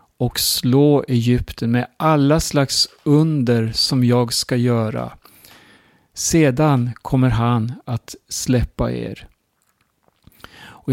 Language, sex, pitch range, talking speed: Swedish, male, 120-140 Hz, 100 wpm